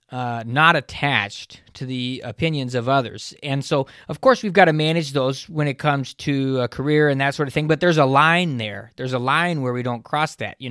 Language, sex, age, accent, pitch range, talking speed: English, male, 20-39, American, 125-160 Hz, 235 wpm